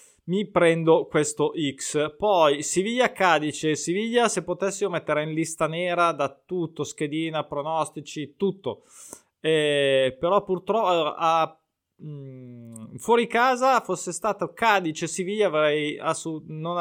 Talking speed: 115 wpm